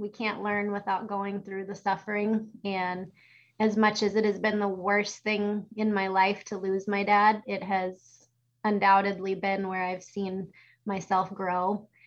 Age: 20-39